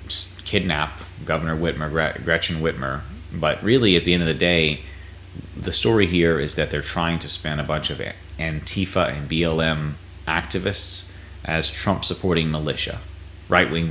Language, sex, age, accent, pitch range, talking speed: English, male, 30-49, American, 80-90 Hz, 140 wpm